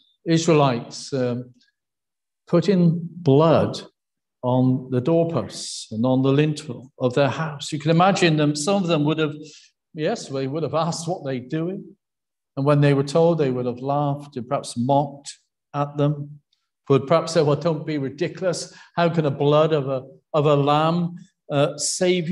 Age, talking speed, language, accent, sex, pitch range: 50-69, 170 wpm, English, British, male, 135-170 Hz